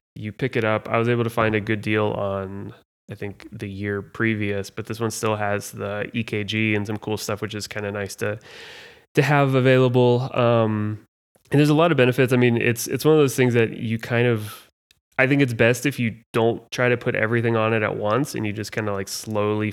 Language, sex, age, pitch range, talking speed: English, male, 20-39, 105-120 Hz, 240 wpm